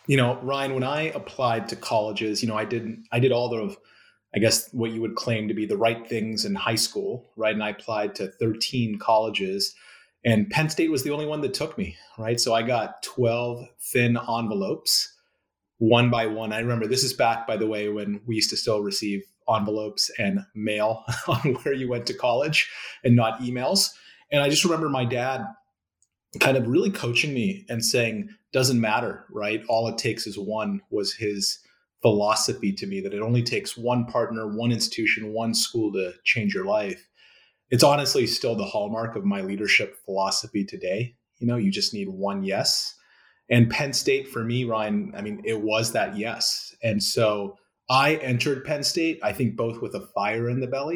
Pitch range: 110-145 Hz